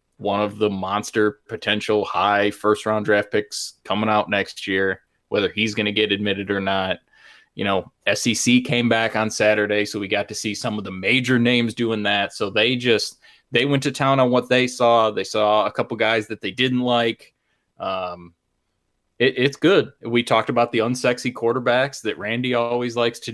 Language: English